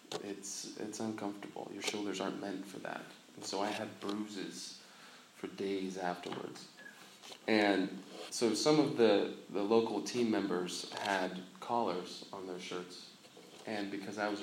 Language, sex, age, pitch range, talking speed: English, male, 20-39, 95-120 Hz, 145 wpm